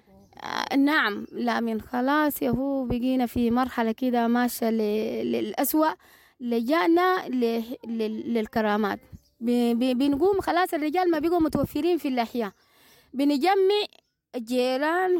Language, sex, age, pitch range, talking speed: English, female, 20-39, 245-330 Hz, 115 wpm